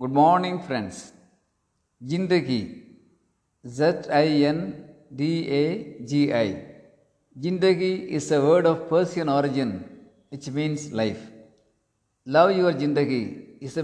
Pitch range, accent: 130-165 Hz, native